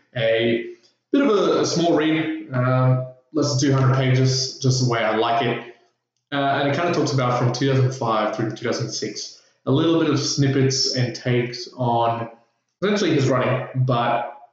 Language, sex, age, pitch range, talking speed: English, male, 20-39, 110-130 Hz, 170 wpm